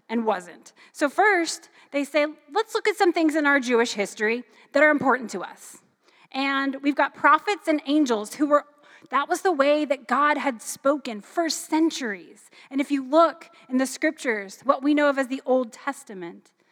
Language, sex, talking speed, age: English, female, 190 wpm, 30-49